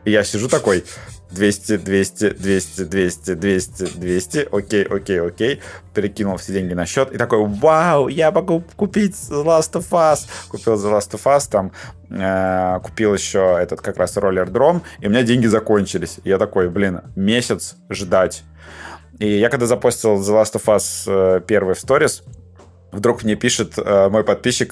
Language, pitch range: Russian, 95-115 Hz